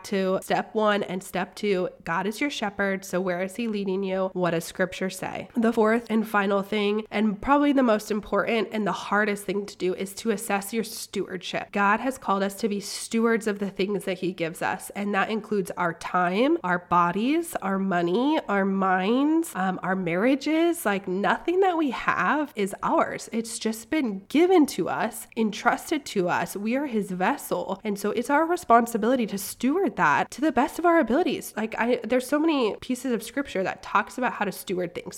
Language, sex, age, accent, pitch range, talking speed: English, female, 20-39, American, 185-230 Hz, 200 wpm